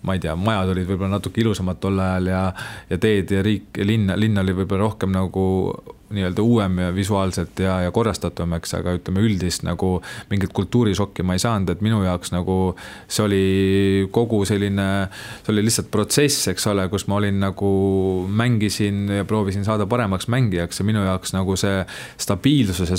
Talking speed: 170 wpm